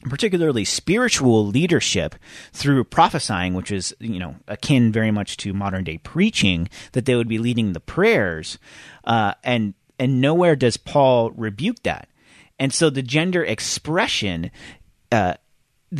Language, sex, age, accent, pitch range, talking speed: English, male, 30-49, American, 110-140 Hz, 140 wpm